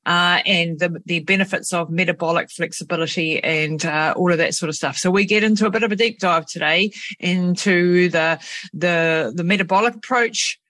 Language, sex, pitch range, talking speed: English, female, 165-210 Hz, 185 wpm